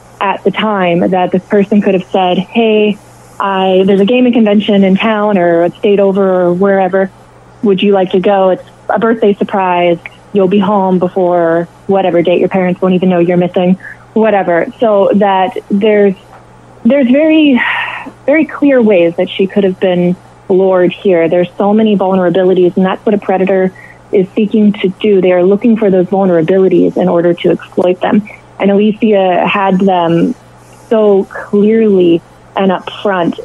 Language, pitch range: English, 180-205 Hz